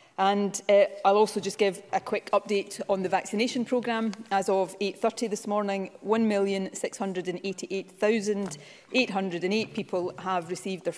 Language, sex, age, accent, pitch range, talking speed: English, female, 30-49, British, 185-215 Hz, 125 wpm